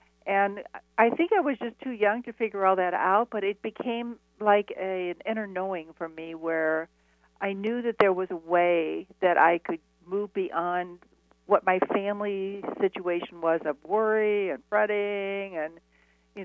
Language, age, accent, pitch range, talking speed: English, 60-79, American, 160-205 Hz, 170 wpm